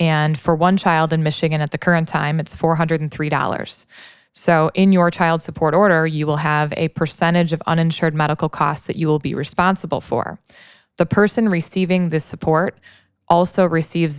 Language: English